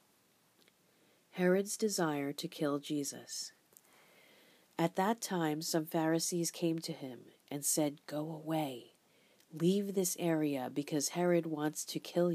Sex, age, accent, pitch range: female, 40-59, American, 145-175 Hz